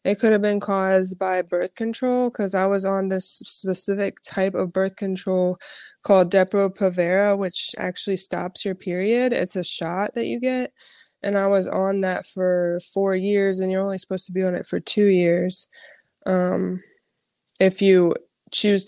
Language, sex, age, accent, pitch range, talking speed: English, female, 20-39, American, 185-205 Hz, 170 wpm